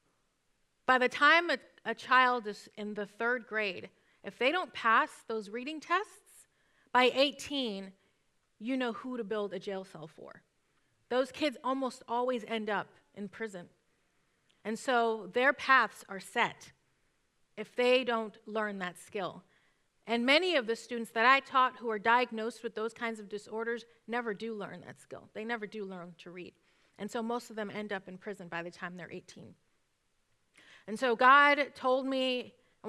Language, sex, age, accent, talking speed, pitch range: English, female, 30-49, American, 175 wpm, 210-255 Hz